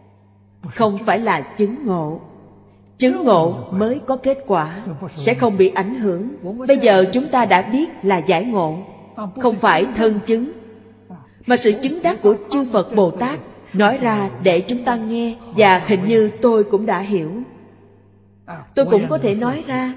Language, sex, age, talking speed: Vietnamese, female, 30-49, 170 wpm